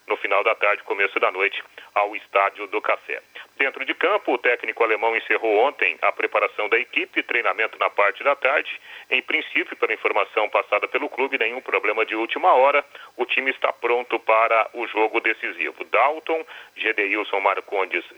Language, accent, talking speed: Portuguese, Brazilian, 170 wpm